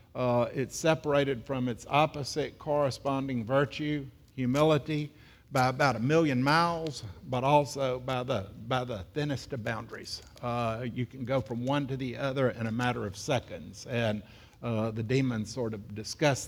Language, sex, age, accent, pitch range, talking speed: English, male, 60-79, American, 115-140 Hz, 160 wpm